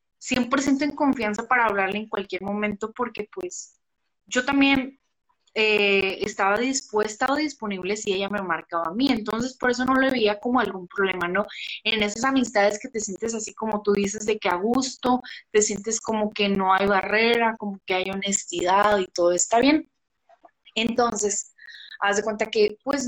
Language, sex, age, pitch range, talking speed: Spanish, female, 20-39, 205-260 Hz, 175 wpm